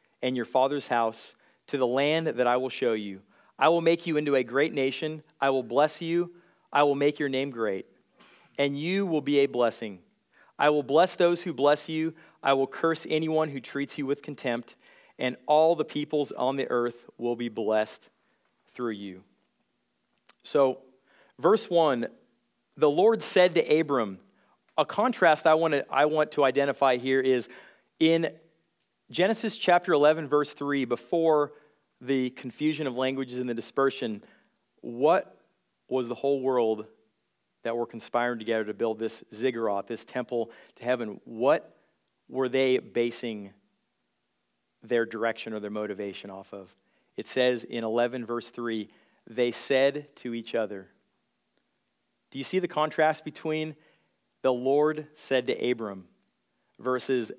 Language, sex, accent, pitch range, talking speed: English, male, American, 115-150 Hz, 155 wpm